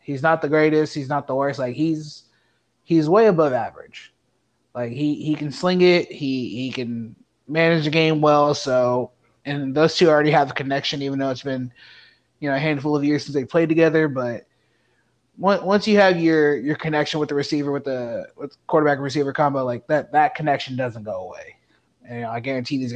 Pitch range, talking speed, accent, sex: 130-160 Hz, 205 wpm, American, male